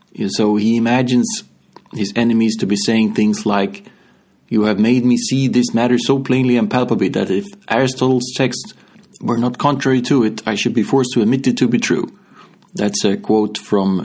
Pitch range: 105-125 Hz